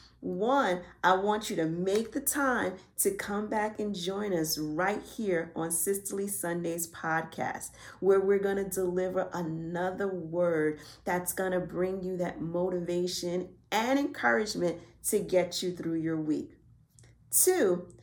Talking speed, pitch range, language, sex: 135 wpm, 175-235 Hz, English, female